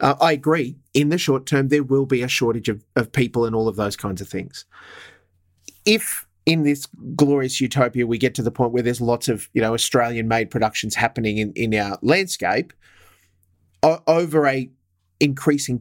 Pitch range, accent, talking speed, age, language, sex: 110-140 Hz, Australian, 185 wpm, 30-49, English, male